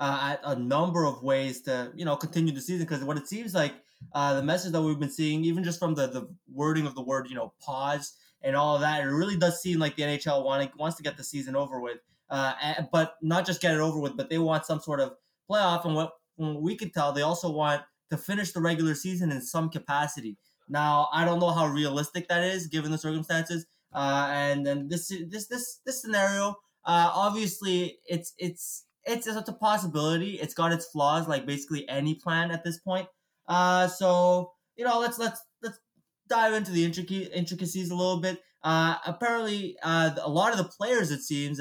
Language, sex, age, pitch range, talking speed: English, male, 20-39, 145-180 Hz, 215 wpm